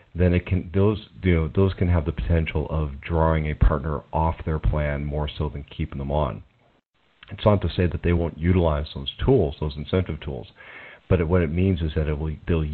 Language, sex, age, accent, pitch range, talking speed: English, male, 40-59, American, 75-90 Hz, 220 wpm